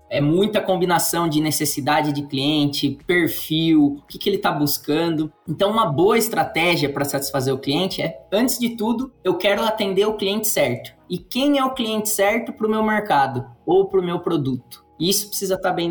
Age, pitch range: 20-39, 150-205 Hz